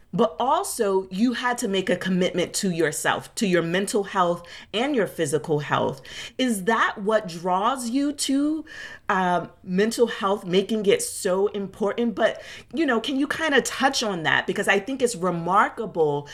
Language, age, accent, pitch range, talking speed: English, 30-49, American, 175-230 Hz, 170 wpm